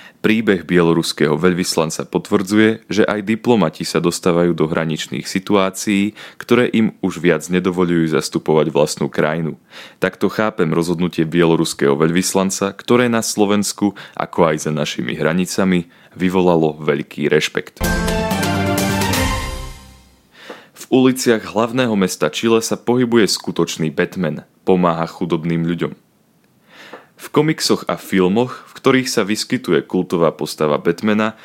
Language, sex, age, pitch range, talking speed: Slovak, male, 20-39, 85-105 Hz, 115 wpm